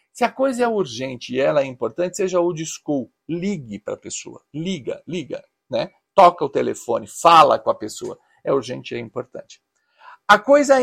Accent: Brazilian